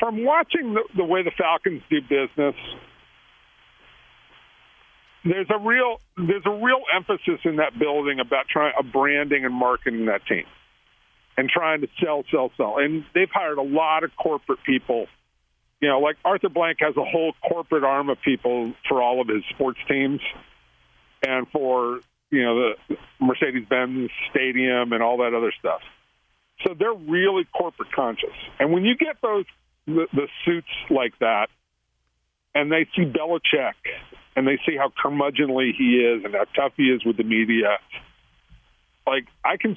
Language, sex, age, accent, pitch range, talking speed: English, male, 50-69, American, 120-175 Hz, 165 wpm